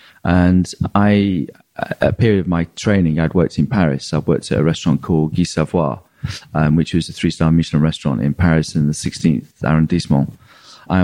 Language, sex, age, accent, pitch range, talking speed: English, male, 30-49, British, 80-105 Hz, 180 wpm